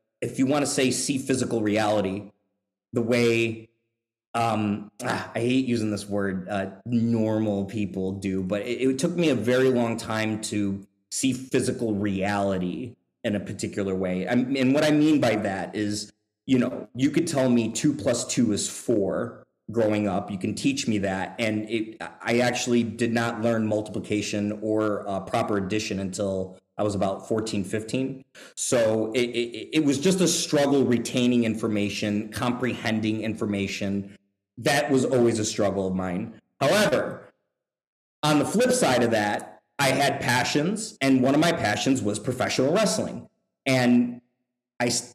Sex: male